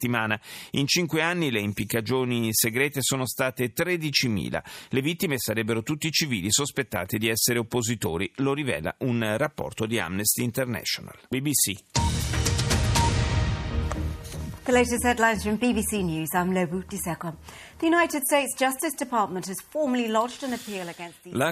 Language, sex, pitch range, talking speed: Italian, male, 110-145 Hz, 75 wpm